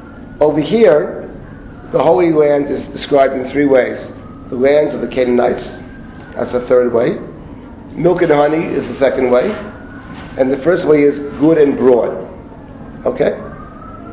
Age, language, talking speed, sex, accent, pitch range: 40-59, English, 150 wpm, male, American, 130-155 Hz